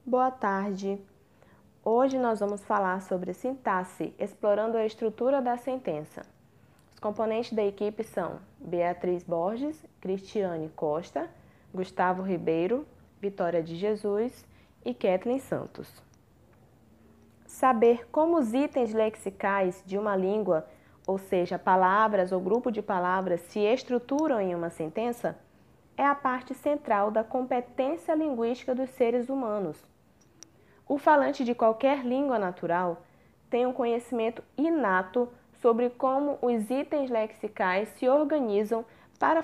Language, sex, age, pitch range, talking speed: Portuguese, female, 20-39, 195-270 Hz, 120 wpm